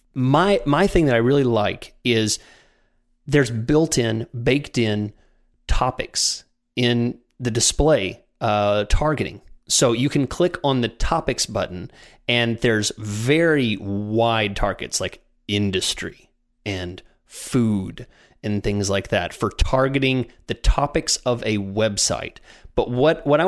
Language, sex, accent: English, male, American